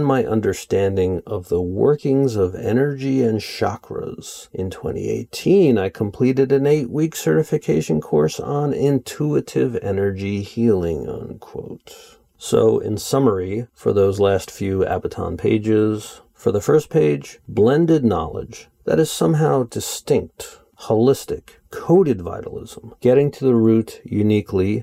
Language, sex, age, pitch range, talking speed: English, male, 50-69, 90-125 Hz, 120 wpm